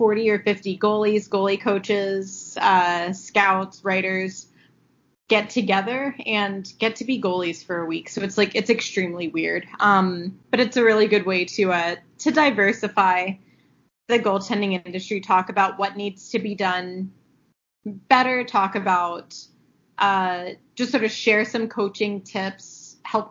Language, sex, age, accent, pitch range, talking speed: English, female, 20-39, American, 185-215 Hz, 150 wpm